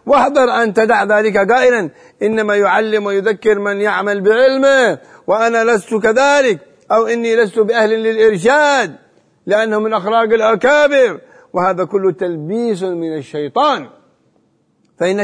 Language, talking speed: Arabic, 115 wpm